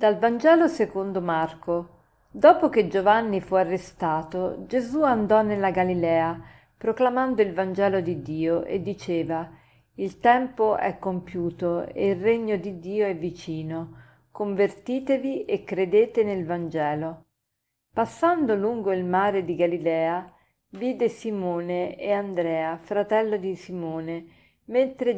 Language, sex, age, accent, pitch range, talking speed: Italian, female, 40-59, native, 170-215 Hz, 120 wpm